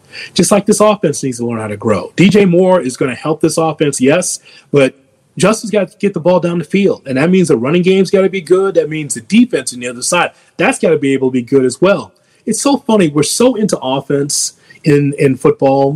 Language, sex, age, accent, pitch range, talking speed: English, male, 30-49, American, 145-200 Hz, 250 wpm